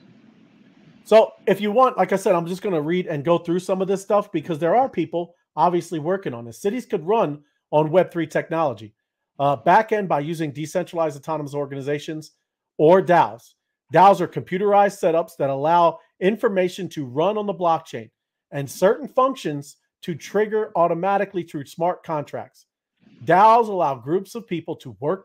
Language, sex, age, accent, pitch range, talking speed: English, male, 40-59, American, 145-195 Hz, 165 wpm